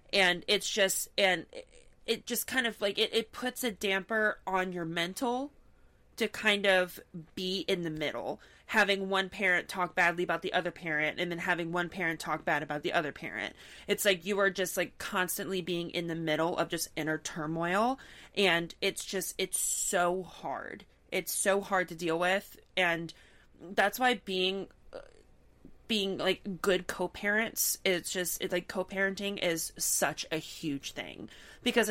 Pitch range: 180-220 Hz